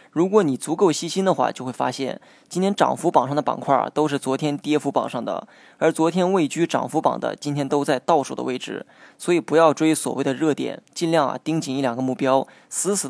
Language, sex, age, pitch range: Chinese, male, 20-39, 135-165 Hz